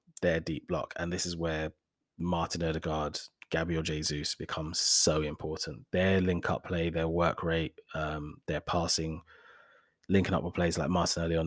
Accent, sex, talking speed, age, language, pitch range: British, male, 155 wpm, 20-39, English, 80-90 Hz